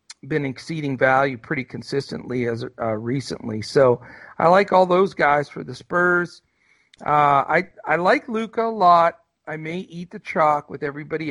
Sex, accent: male, American